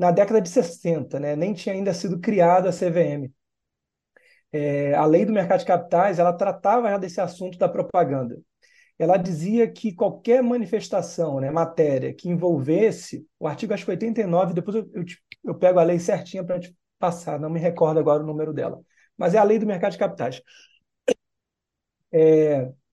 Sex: male